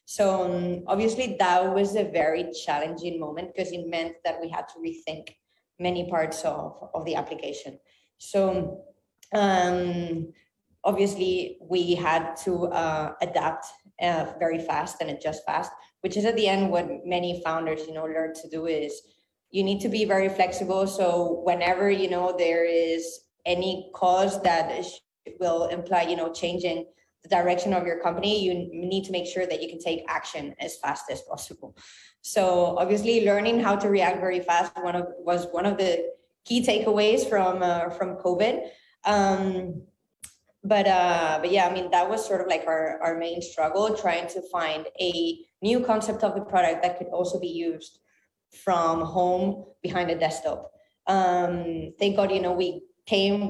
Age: 20-39